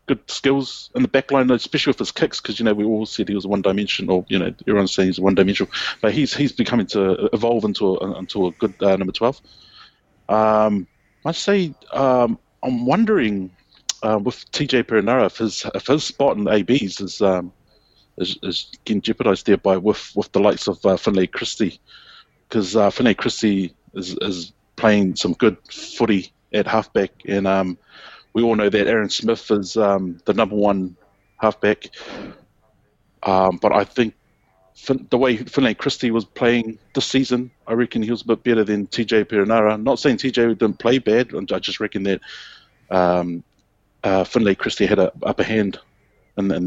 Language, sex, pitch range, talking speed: English, male, 100-125 Hz, 185 wpm